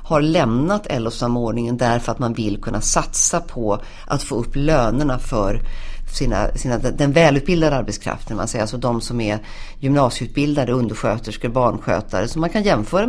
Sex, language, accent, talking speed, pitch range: female, Swedish, native, 150 wpm, 115-160 Hz